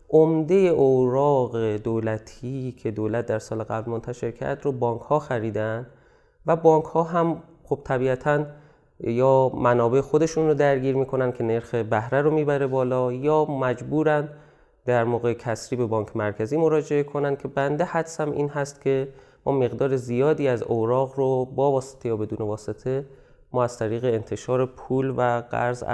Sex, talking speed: male, 155 wpm